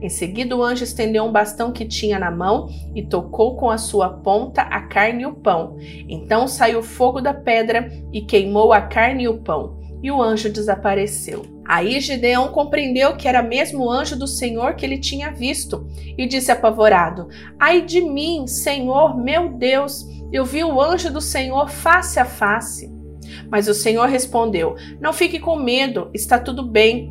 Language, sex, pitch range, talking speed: Portuguese, female, 205-260 Hz, 180 wpm